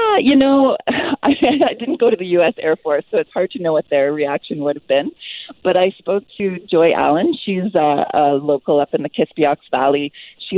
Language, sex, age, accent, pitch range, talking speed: English, female, 40-59, American, 145-185 Hz, 220 wpm